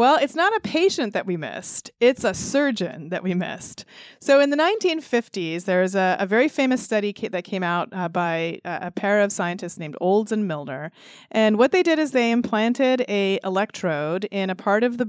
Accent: American